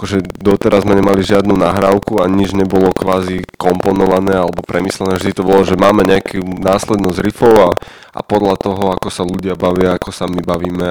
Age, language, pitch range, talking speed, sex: 20-39, Slovak, 90-95 Hz, 180 wpm, male